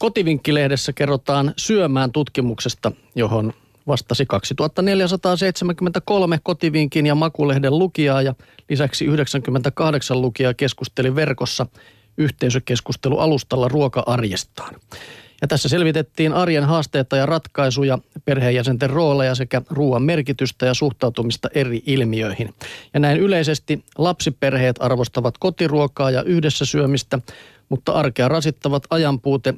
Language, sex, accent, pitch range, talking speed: Finnish, male, native, 125-150 Hz, 95 wpm